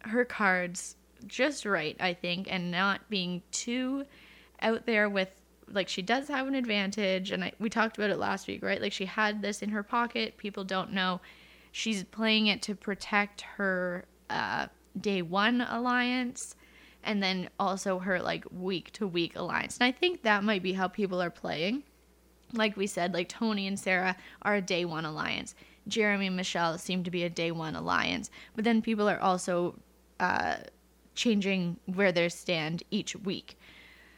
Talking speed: 175 wpm